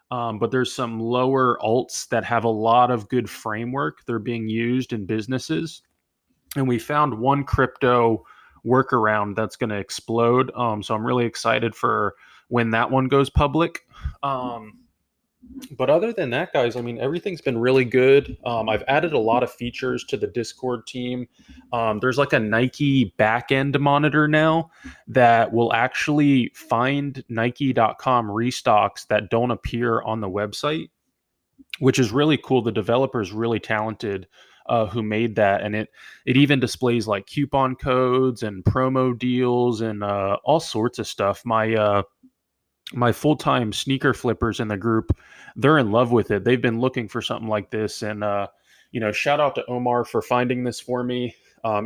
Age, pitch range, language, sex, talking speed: 20-39, 110-130 Hz, English, male, 170 wpm